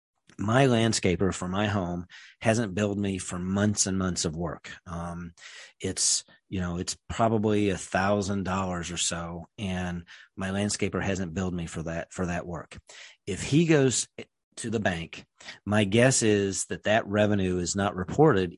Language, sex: English, male